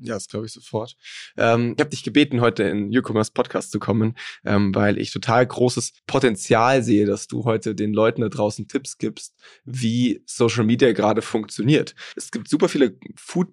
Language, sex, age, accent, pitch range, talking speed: German, male, 20-39, German, 110-130 Hz, 190 wpm